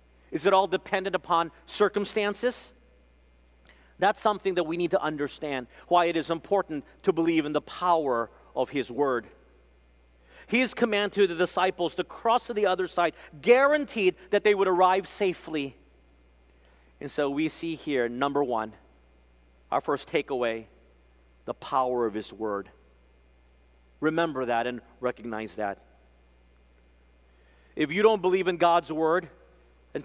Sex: male